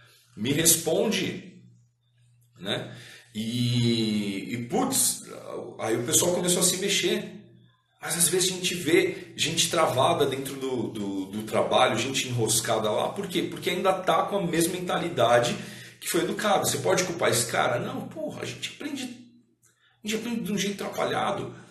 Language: Portuguese